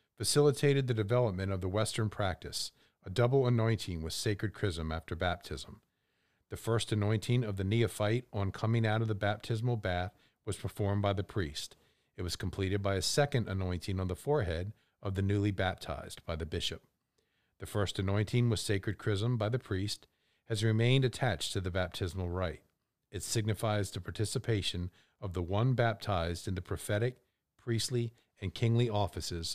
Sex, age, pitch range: male, 40-59, 90-115 Hz